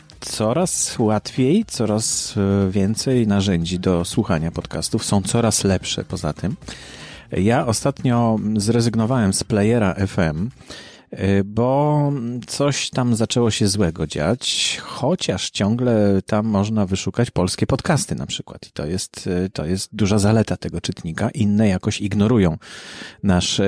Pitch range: 100-130 Hz